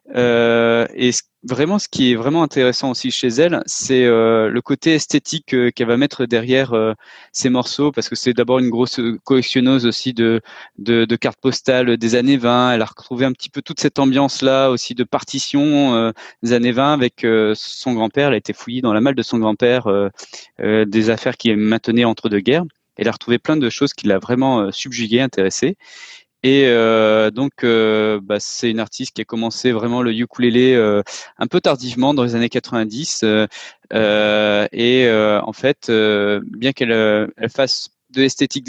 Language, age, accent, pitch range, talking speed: French, 20-39, French, 115-135 Hz, 195 wpm